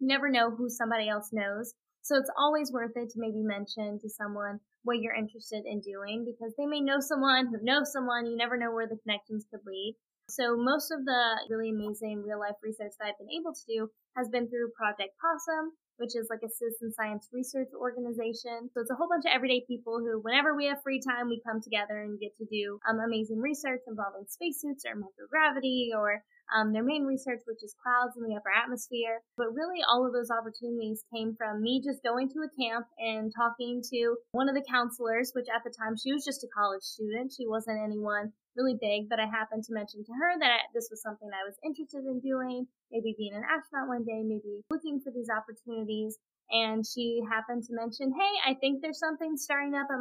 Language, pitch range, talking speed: English, 220-265 Hz, 220 wpm